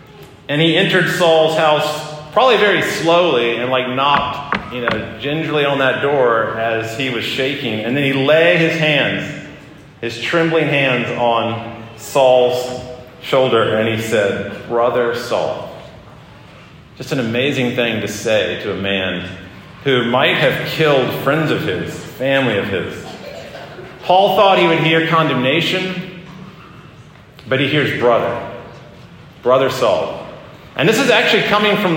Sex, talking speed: male, 140 wpm